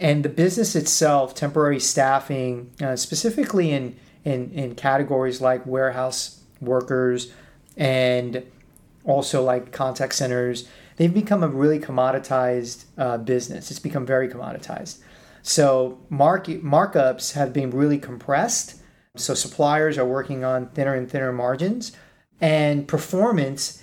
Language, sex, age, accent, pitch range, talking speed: English, male, 40-59, American, 130-155 Hz, 125 wpm